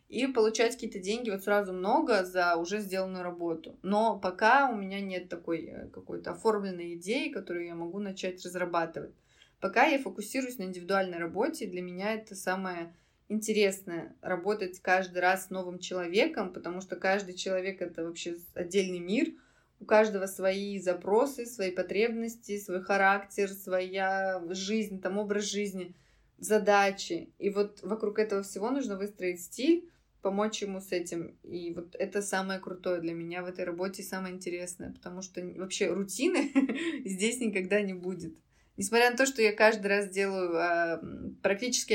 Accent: native